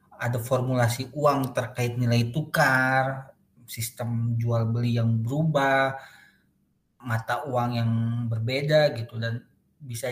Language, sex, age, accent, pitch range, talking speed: Indonesian, male, 20-39, native, 120-150 Hz, 100 wpm